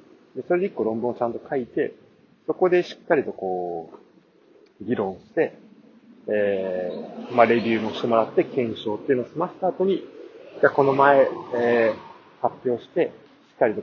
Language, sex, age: Japanese, male, 40-59